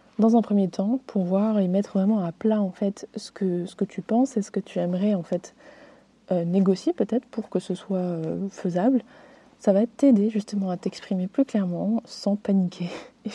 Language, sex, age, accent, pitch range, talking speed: French, female, 20-39, French, 185-225 Hz, 205 wpm